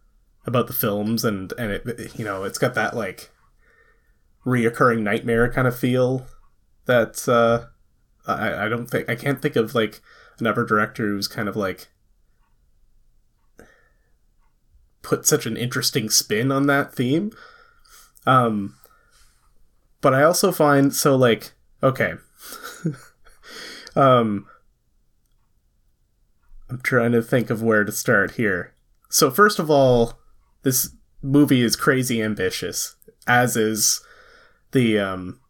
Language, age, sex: English, 20-39, male